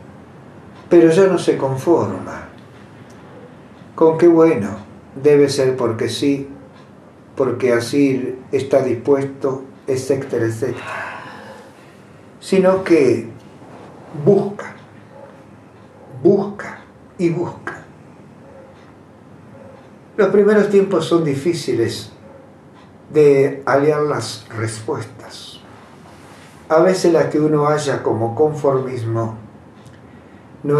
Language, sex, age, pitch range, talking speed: Spanish, male, 60-79, 120-160 Hz, 80 wpm